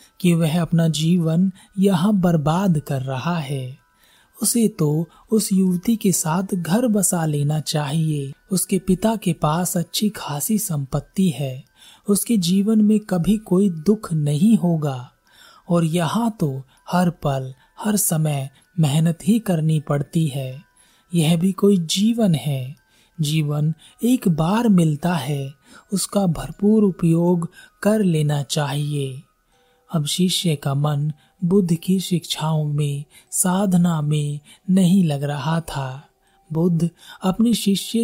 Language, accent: Hindi, native